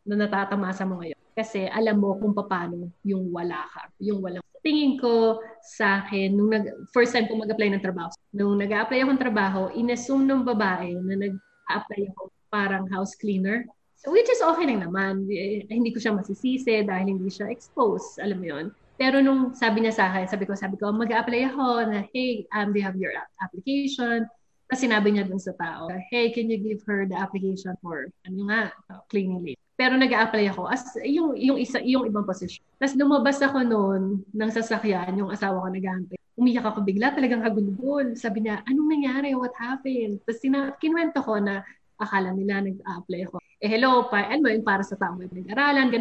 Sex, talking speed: female, 185 wpm